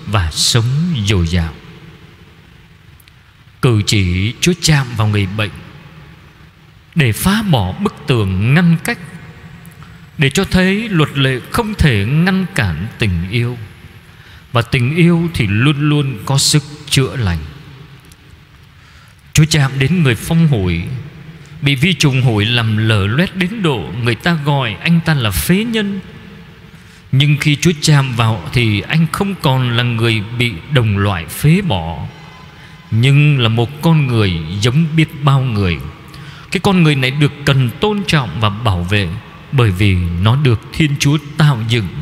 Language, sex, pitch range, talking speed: Vietnamese, male, 105-155 Hz, 150 wpm